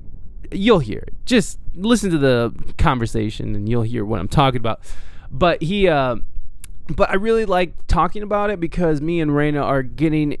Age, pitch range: 20-39, 115-170 Hz